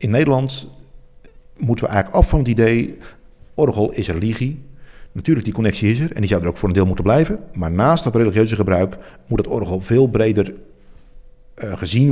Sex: male